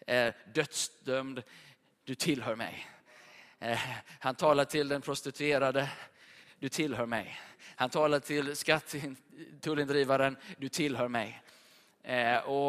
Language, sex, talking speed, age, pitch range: Swedish, male, 100 wpm, 20-39, 135-155 Hz